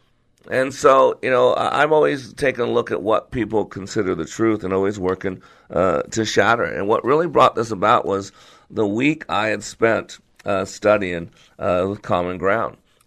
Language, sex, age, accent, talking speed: English, male, 50-69, American, 185 wpm